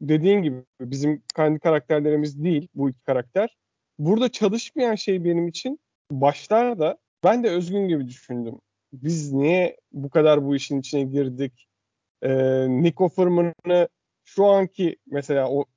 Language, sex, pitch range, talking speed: Turkish, male, 140-200 Hz, 135 wpm